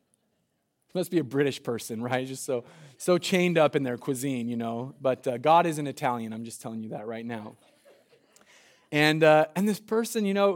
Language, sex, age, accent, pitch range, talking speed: English, male, 20-39, American, 120-165 Hz, 210 wpm